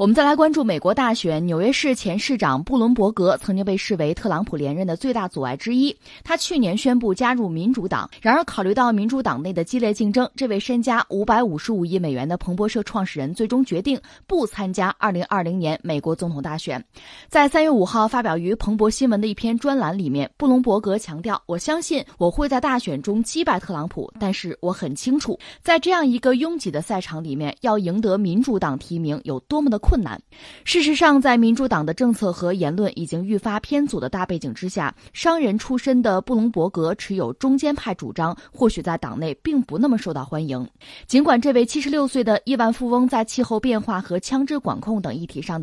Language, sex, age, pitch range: Chinese, female, 20-39, 175-255 Hz